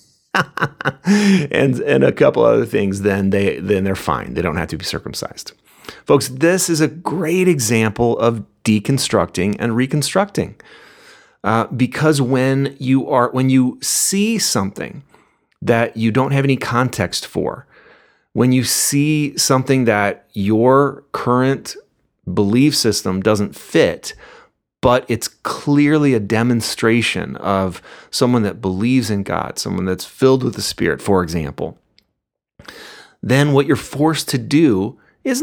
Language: English